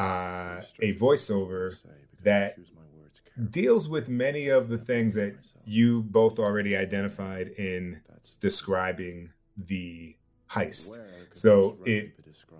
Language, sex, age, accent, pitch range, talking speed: English, male, 30-49, American, 95-115 Hz, 100 wpm